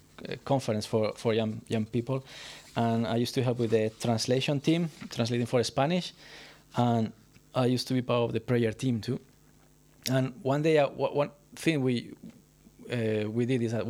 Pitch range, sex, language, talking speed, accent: 115-140 Hz, male, English, 175 wpm, Spanish